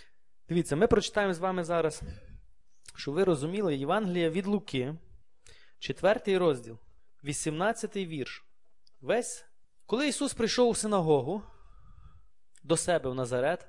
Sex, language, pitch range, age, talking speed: male, Ukrainian, 155-220 Hz, 20-39, 115 wpm